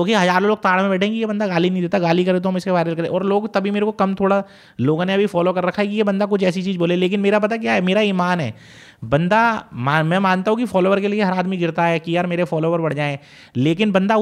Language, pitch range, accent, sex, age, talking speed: Hindi, 170-210 Hz, native, male, 30-49, 285 wpm